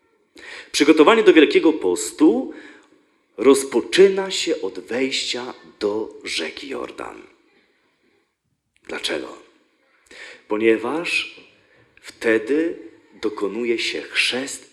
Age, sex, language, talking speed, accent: 40-59, male, Polish, 70 wpm, native